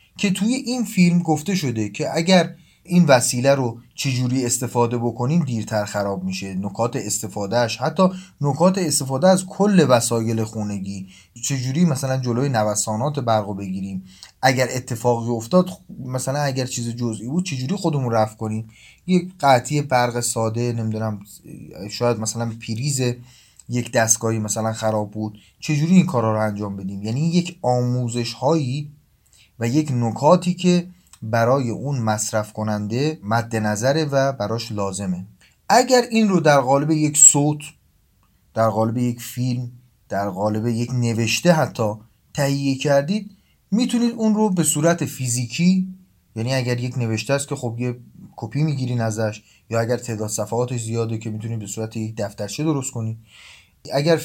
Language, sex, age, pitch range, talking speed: Persian, male, 30-49, 110-150 Hz, 145 wpm